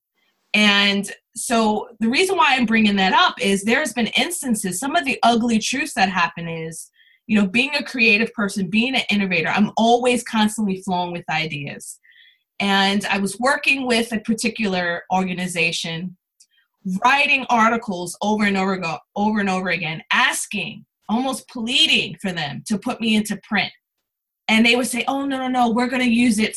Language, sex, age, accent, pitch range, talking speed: English, female, 20-39, American, 185-240 Hz, 165 wpm